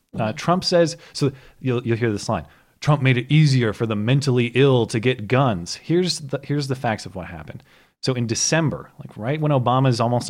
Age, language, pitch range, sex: 30-49, English, 105-140 Hz, male